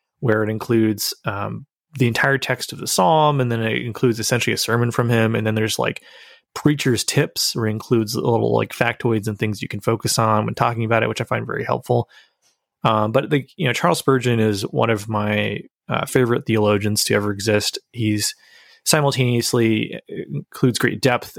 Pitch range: 110-135 Hz